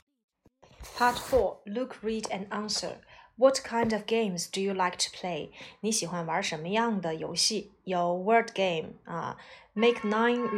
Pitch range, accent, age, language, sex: 185-230 Hz, native, 20-39, Chinese, female